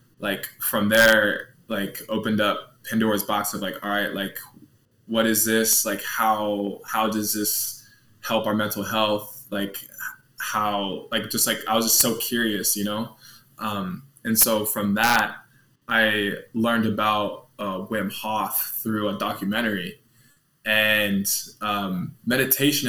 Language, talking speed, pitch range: English, 140 wpm, 105-115 Hz